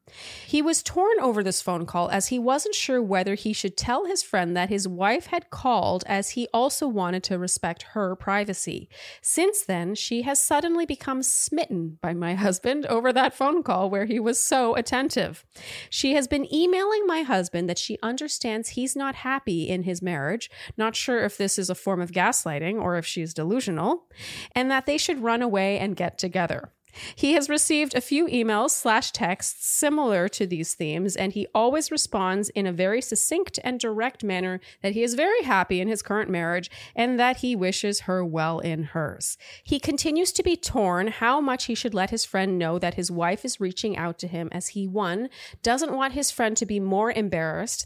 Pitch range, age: 185-260 Hz, 30-49